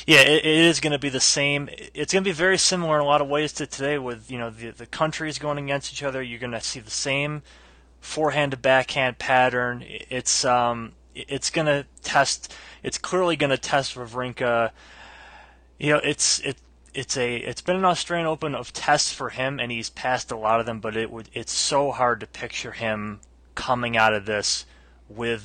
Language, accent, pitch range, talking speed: English, American, 115-145 Hz, 210 wpm